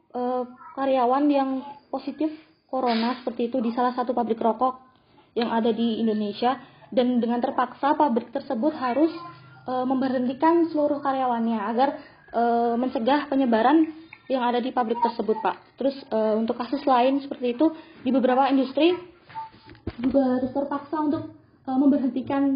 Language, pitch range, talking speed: Indonesian, 235-270 Hz, 140 wpm